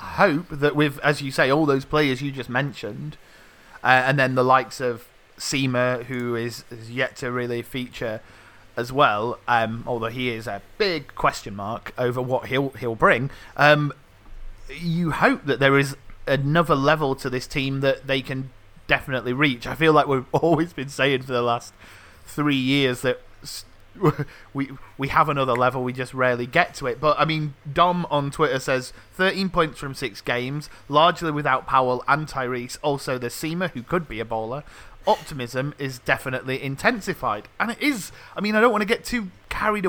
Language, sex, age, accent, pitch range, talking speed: English, male, 30-49, British, 125-150 Hz, 185 wpm